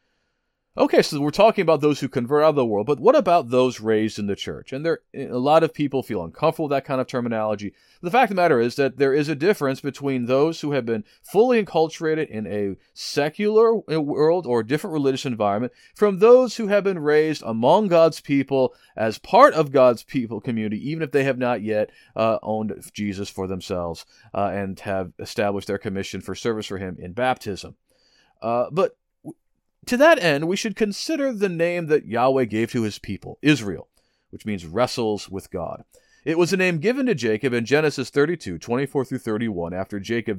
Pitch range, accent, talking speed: 100-155 Hz, American, 200 wpm